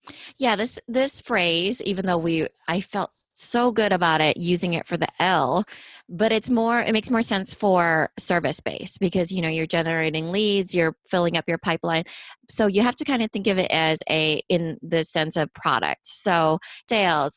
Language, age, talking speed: English, 20-39, 195 wpm